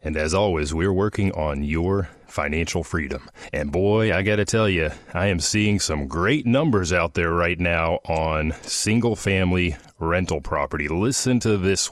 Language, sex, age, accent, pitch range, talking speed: English, male, 30-49, American, 85-105 Hz, 170 wpm